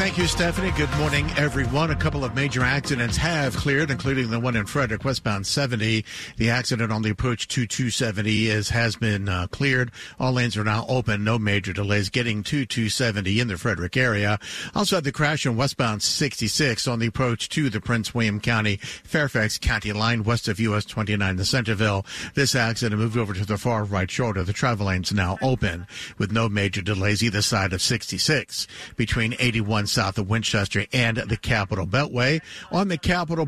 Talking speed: 185 wpm